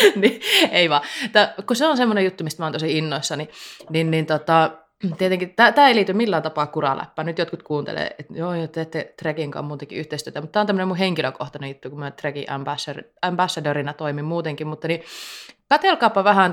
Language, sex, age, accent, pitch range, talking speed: Finnish, female, 20-39, native, 150-180 Hz, 180 wpm